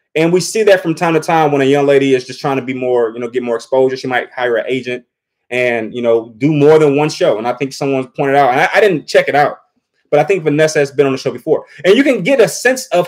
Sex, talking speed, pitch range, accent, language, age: male, 305 wpm, 140-195 Hz, American, English, 20-39